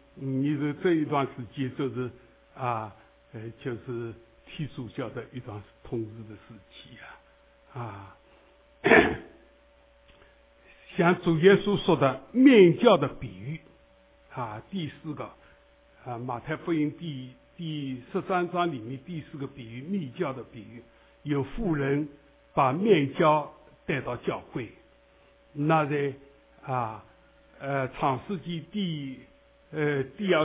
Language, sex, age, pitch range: English, male, 60-79, 125-160 Hz